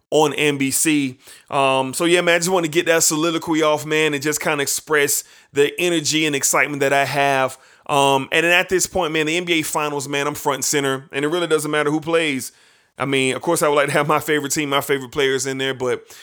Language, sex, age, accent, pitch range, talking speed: English, male, 30-49, American, 135-165 Hz, 245 wpm